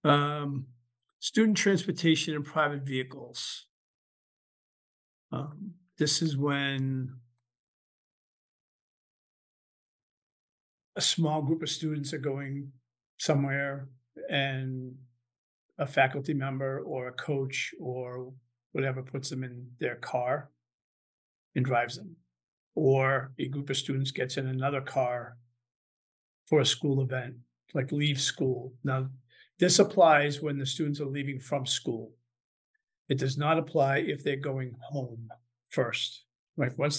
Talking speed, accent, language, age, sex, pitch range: 115 wpm, American, English, 50-69, male, 125-150 Hz